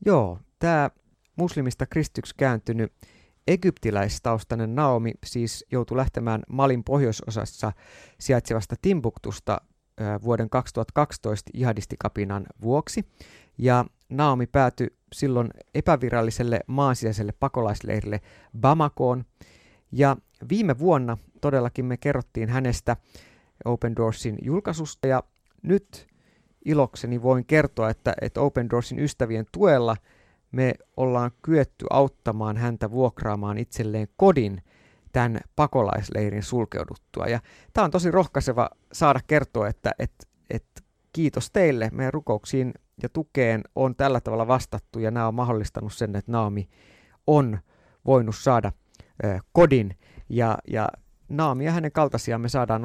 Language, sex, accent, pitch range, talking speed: Finnish, male, native, 110-135 Hz, 110 wpm